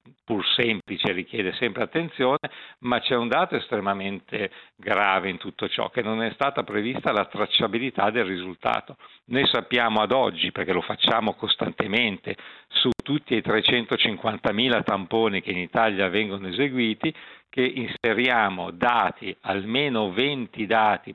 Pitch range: 100-130 Hz